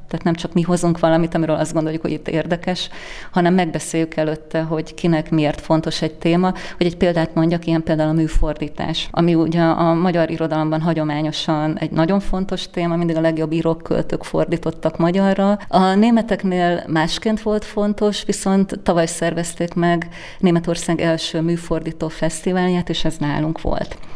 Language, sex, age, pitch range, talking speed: Hungarian, female, 30-49, 155-170 Hz, 155 wpm